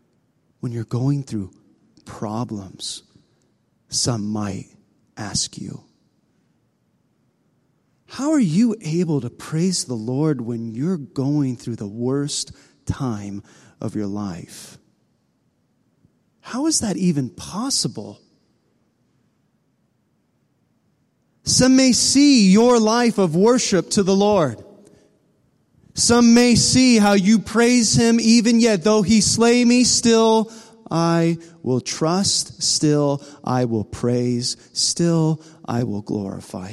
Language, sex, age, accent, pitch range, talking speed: English, male, 30-49, American, 120-190 Hz, 110 wpm